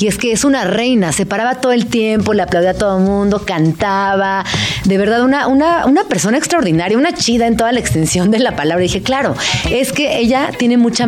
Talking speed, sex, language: 220 wpm, female, Spanish